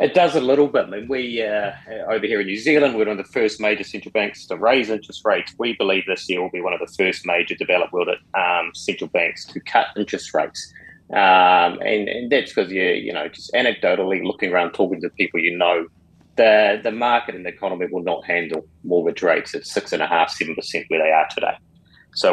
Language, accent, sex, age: English, Australian, male, 30-49